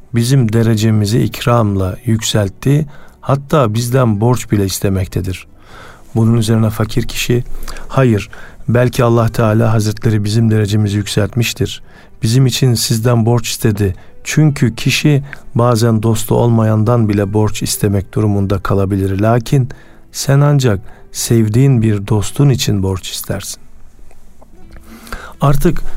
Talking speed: 105 wpm